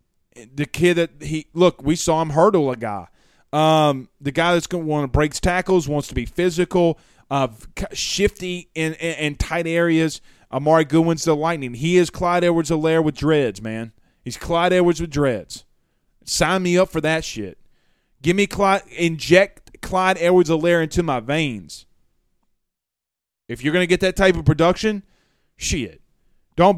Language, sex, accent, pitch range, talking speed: English, male, American, 140-180 Hz, 165 wpm